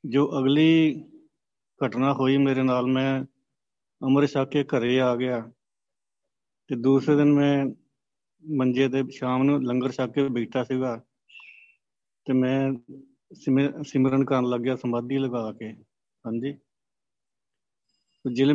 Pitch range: 125-140 Hz